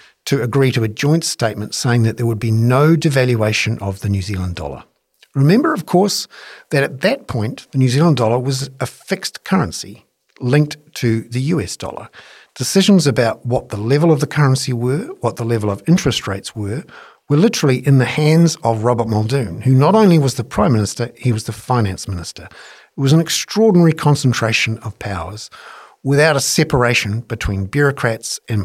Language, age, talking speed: English, 50-69, 180 wpm